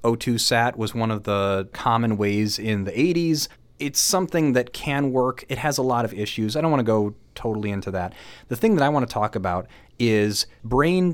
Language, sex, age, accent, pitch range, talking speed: English, male, 30-49, American, 105-130 Hz, 215 wpm